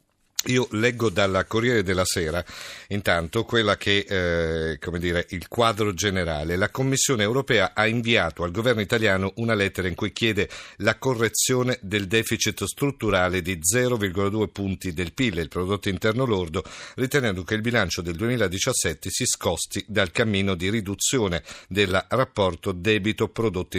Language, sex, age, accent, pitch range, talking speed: Italian, male, 50-69, native, 95-115 Hz, 145 wpm